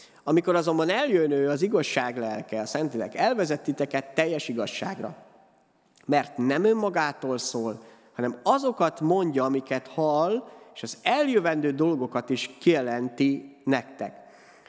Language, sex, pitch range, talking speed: Hungarian, male, 125-160 Hz, 115 wpm